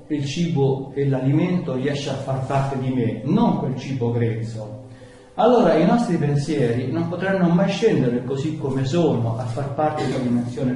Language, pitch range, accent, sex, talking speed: Italian, 135-185 Hz, native, male, 175 wpm